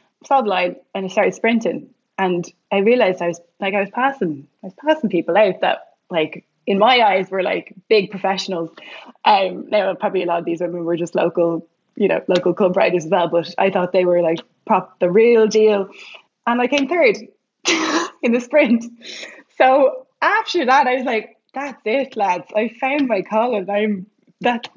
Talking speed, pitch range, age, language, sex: 195 wpm, 180-235 Hz, 20-39, English, female